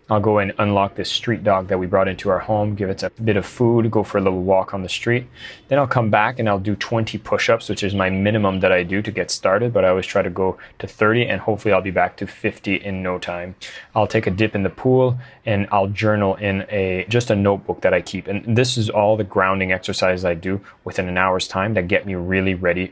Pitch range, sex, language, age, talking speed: 95-110 Hz, male, English, 20-39, 260 wpm